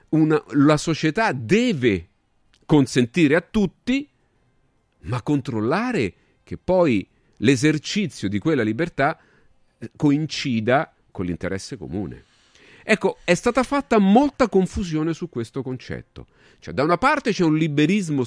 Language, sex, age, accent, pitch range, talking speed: Italian, male, 40-59, native, 110-180 Hz, 115 wpm